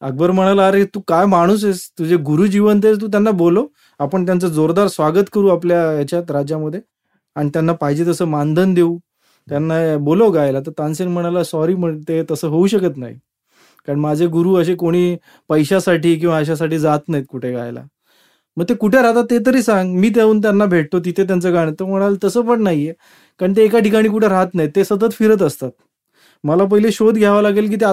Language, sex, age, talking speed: English, male, 30-49, 75 wpm